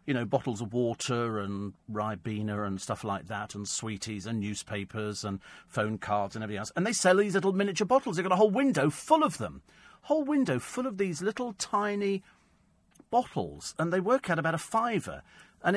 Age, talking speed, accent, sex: 40-59, 200 wpm, British, male